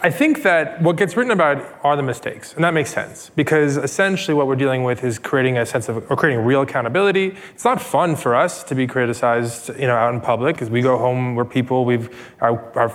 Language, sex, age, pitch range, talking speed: English, male, 20-39, 120-150 Hz, 235 wpm